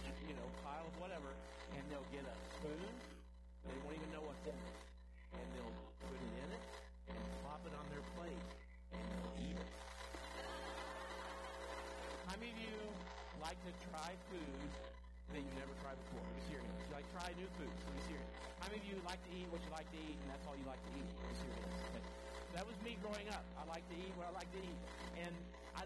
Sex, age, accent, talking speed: male, 50-69, American, 220 wpm